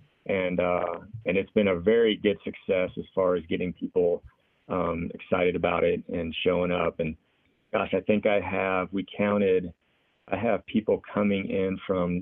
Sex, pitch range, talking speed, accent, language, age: male, 90-105 Hz, 170 wpm, American, English, 40-59